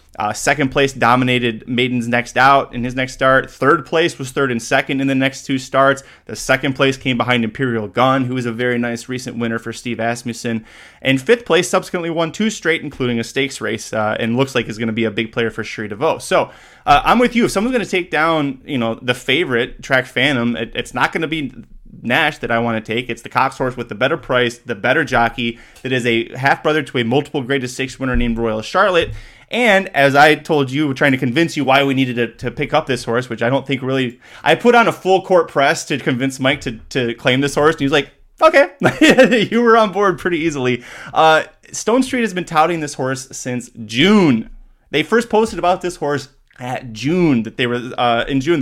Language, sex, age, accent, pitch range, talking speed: English, male, 20-39, American, 120-155 Hz, 235 wpm